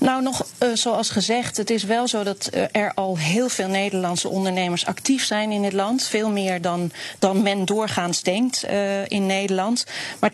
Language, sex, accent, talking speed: Dutch, female, Dutch, 190 wpm